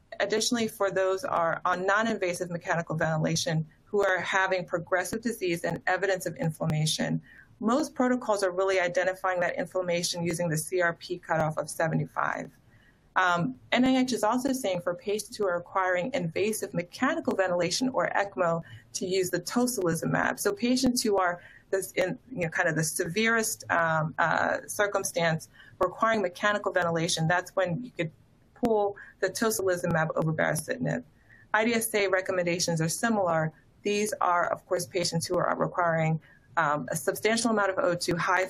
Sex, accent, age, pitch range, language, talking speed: female, American, 30-49, 170-200 Hz, English, 150 wpm